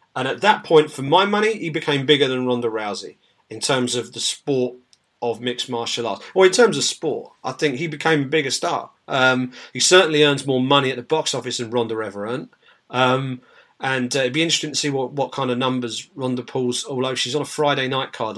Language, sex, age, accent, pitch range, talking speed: English, male, 40-59, British, 125-165 Hz, 230 wpm